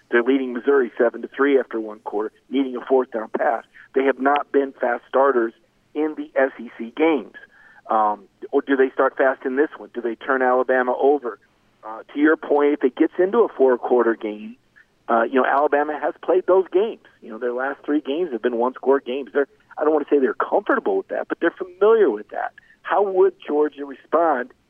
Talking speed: 210 wpm